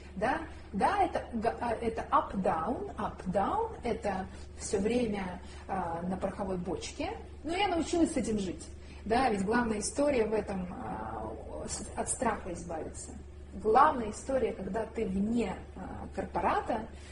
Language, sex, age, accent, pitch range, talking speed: Russian, female, 30-49, native, 195-250 Hz, 135 wpm